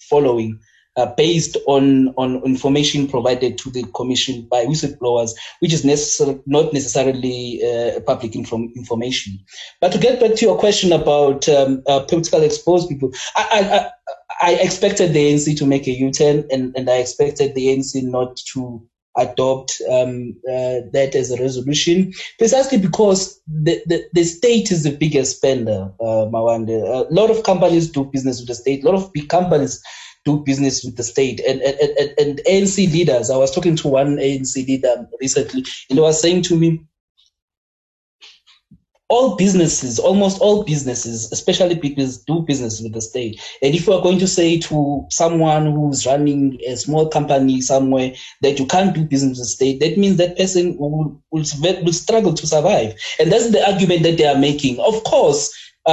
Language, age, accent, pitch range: English, 20-39, South African, 130-165 Hz